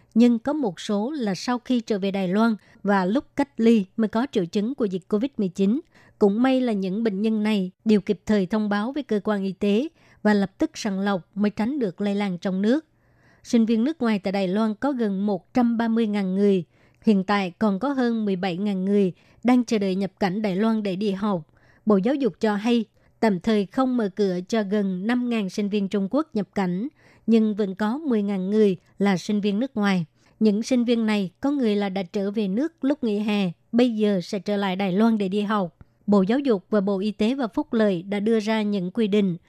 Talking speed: 225 wpm